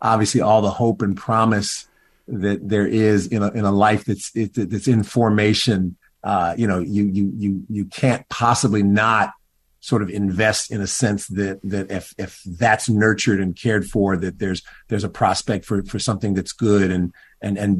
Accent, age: American, 50-69